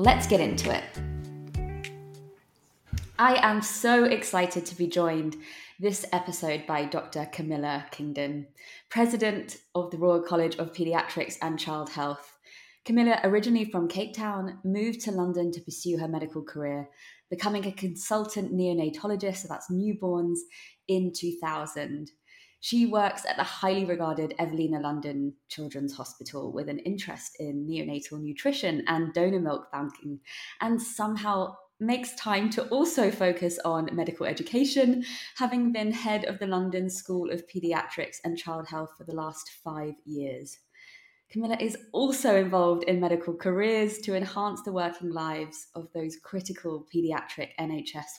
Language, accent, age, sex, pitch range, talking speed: English, British, 20-39, female, 150-195 Hz, 140 wpm